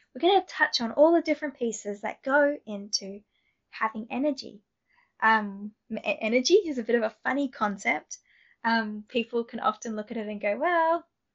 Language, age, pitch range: English, 10-29, 210-280 Hz